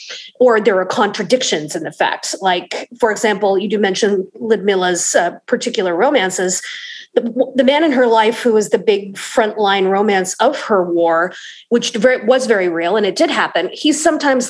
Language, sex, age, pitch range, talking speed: English, female, 30-49, 195-270 Hz, 170 wpm